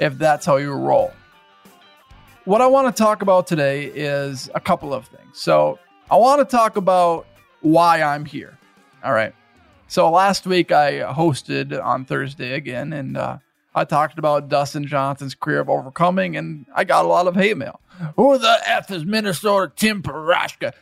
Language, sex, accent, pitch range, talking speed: English, male, American, 145-200 Hz, 175 wpm